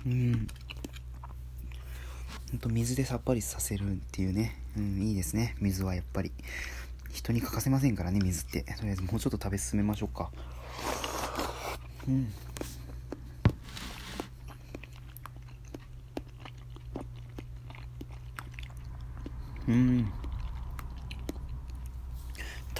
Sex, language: male, Japanese